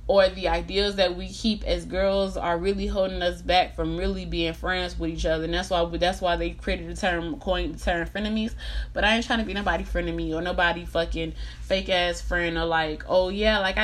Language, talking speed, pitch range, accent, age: English, 230 wpm, 165-195 Hz, American, 20-39